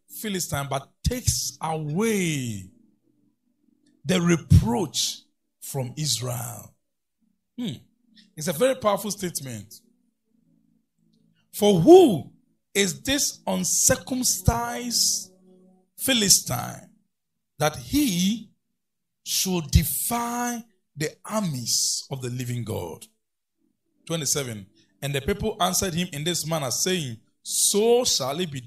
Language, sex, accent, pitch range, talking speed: English, male, Nigerian, 135-220 Hz, 90 wpm